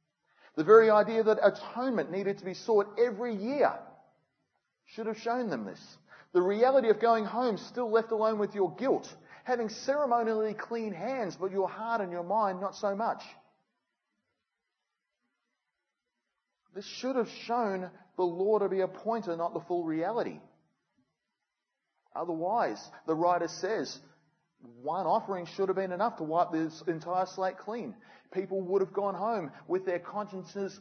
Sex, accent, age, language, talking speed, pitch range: male, Australian, 30-49, English, 150 wpm, 175-220 Hz